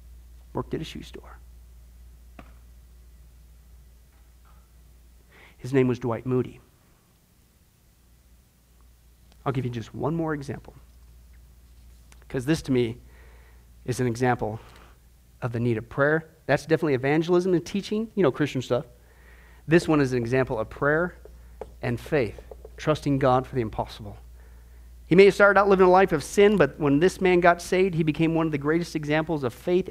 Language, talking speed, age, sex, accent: English, 155 wpm, 40-59, male, American